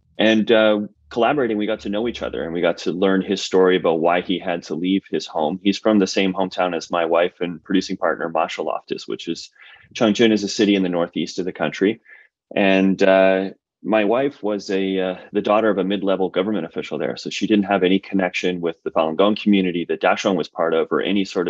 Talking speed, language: 230 wpm, English